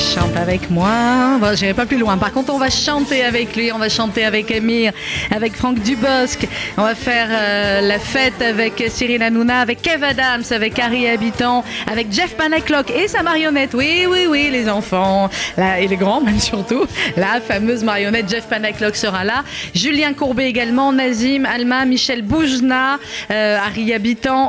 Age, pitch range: 30-49, 195-250 Hz